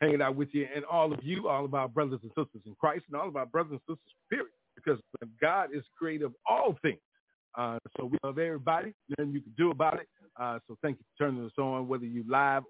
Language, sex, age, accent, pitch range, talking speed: English, male, 40-59, American, 115-140 Hz, 250 wpm